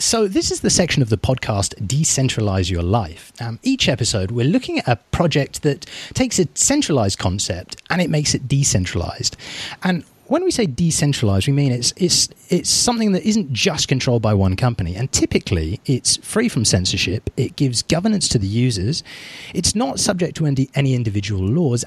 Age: 30-49